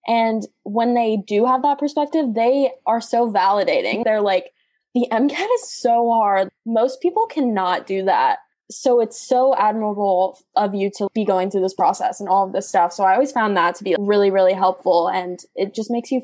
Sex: female